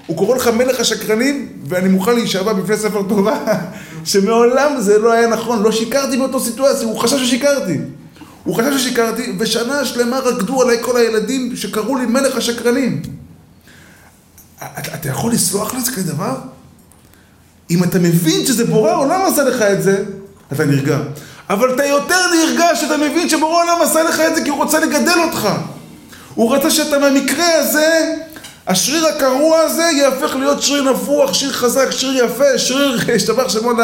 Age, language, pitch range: 20-39, Hebrew, 165-260 Hz